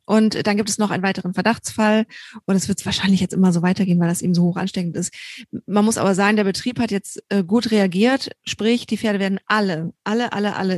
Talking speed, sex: 230 wpm, female